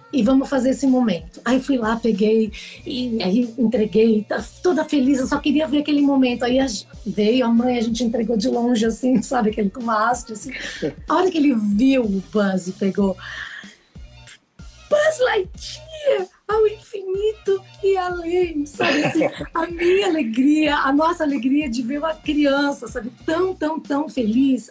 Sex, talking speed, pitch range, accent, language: female, 170 wpm, 230-295 Hz, Brazilian, Portuguese